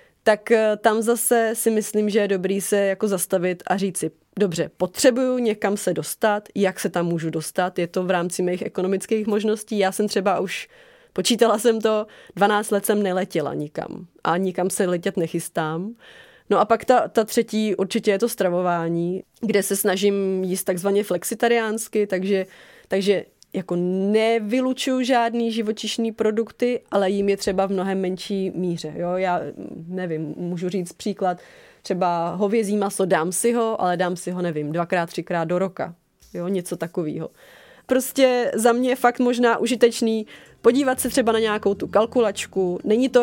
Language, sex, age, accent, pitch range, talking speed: Czech, female, 30-49, native, 180-225 Hz, 165 wpm